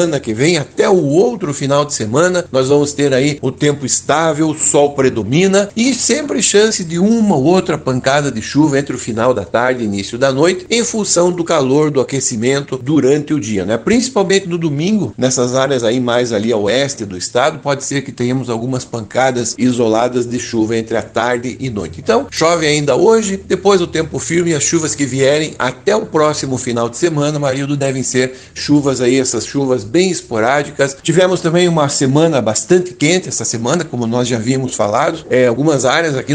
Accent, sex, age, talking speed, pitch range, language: Brazilian, male, 60-79, 195 wpm, 120-160 Hz, Portuguese